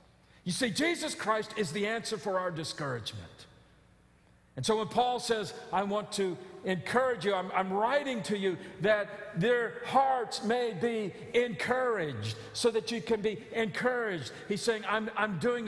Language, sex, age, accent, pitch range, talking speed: English, male, 50-69, American, 205-270 Hz, 160 wpm